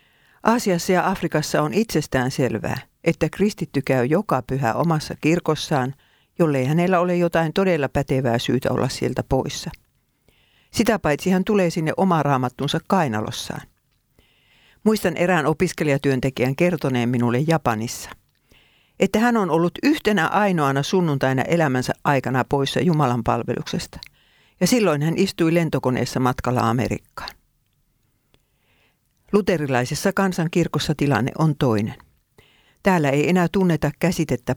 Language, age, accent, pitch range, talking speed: Finnish, 50-69, native, 130-175 Hz, 115 wpm